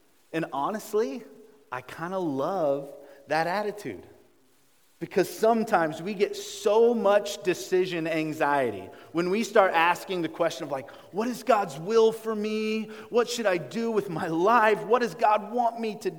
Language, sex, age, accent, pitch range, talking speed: English, male, 30-49, American, 160-230 Hz, 160 wpm